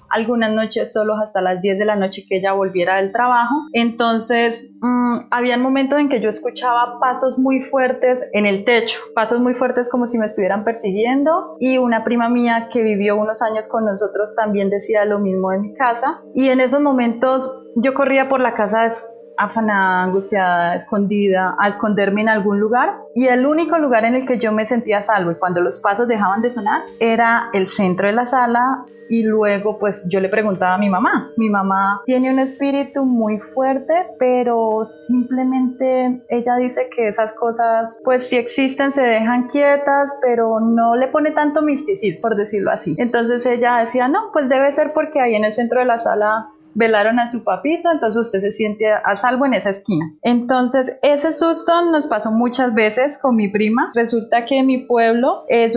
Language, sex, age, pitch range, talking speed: Spanish, female, 30-49, 215-255 Hz, 190 wpm